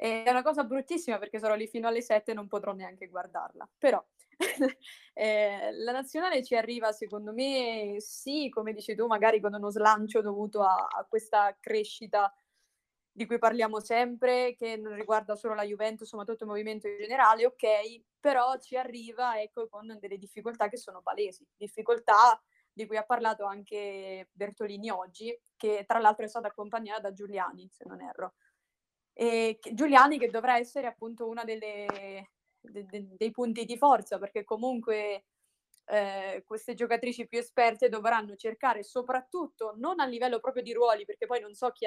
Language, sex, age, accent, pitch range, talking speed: Italian, female, 20-39, native, 210-240 Hz, 160 wpm